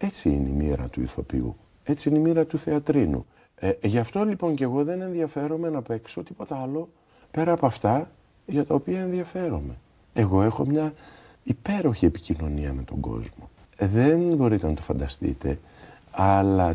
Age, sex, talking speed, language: 50-69, male, 165 wpm, Greek